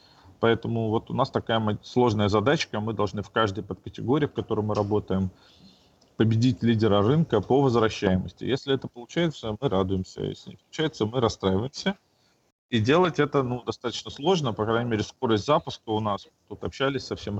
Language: Russian